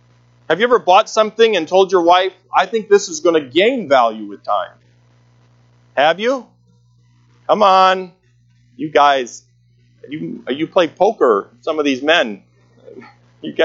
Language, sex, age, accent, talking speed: English, male, 40-59, American, 150 wpm